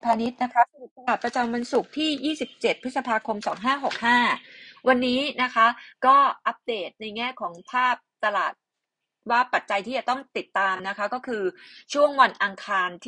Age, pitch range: 20-39, 195-255 Hz